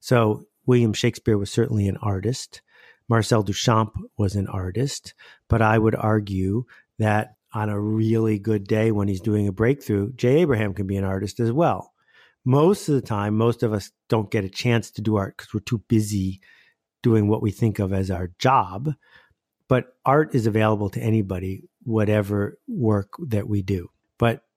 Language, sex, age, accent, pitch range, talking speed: English, male, 50-69, American, 105-120 Hz, 180 wpm